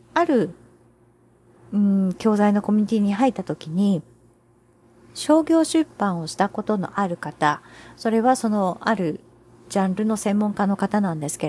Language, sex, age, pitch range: Japanese, female, 40-59, 175-265 Hz